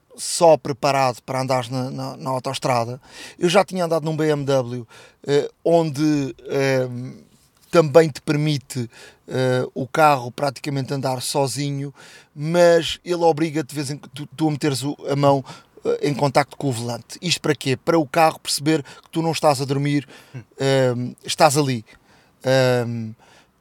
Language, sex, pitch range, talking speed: Portuguese, male, 135-160 Hz, 160 wpm